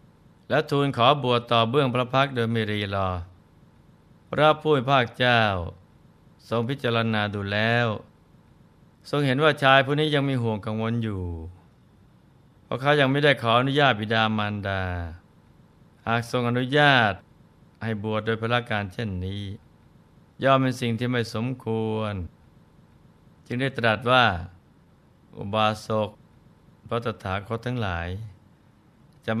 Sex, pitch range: male, 105-125 Hz